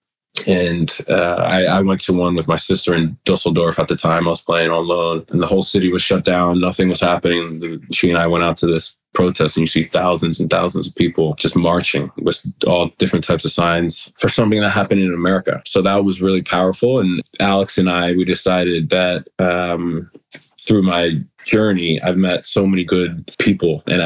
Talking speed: 205 wpm